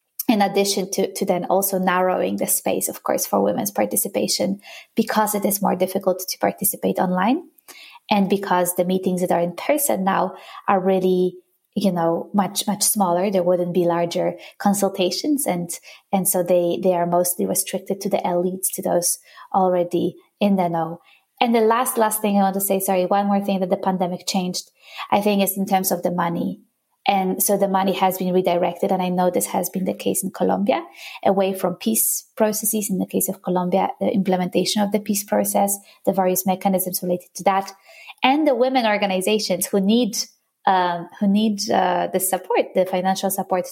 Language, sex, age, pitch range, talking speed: English, female, 20-39, 180-205 Hz, 190 wpm